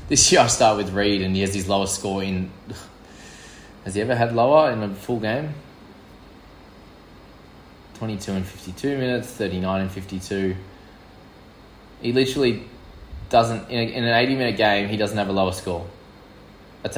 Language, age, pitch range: English, 20-39, 95-125 Hz